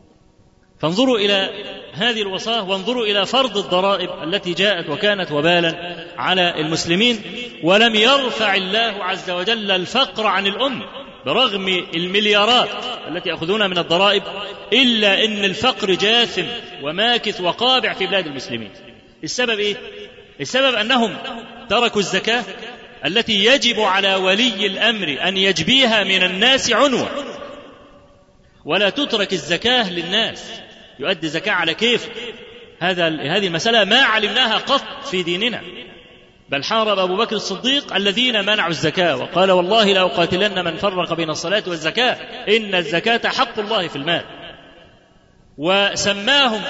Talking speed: 120 wpm